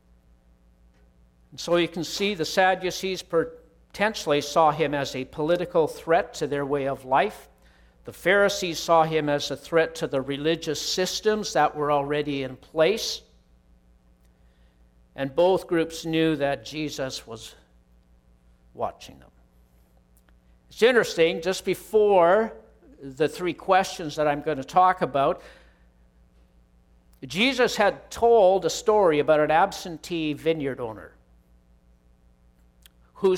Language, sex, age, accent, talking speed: English, male, 60-79, American, 120 wpm